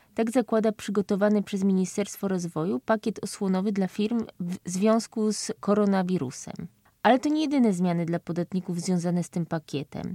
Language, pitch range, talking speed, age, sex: Polish, 190-225 Hz, 150 wpm, 20-39, female